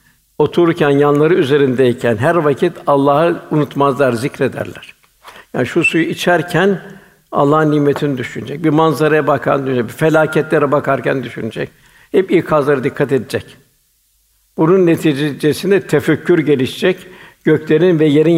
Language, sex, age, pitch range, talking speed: Turkish, male, 60-79, 140-165 Hz, 115 wpm